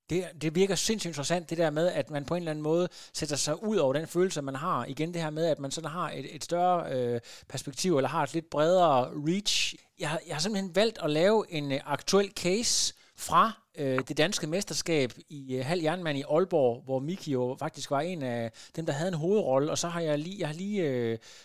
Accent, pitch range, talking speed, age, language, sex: native, 145-185 Hz, 230 wpm, 30-49, Danish, male